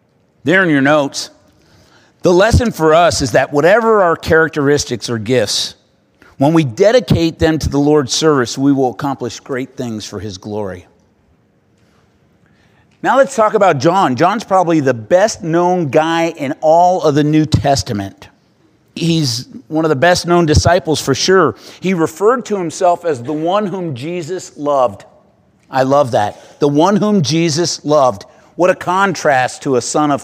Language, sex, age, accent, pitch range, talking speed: English, male, 50-69, American, 130-175 Hz, 165 wpm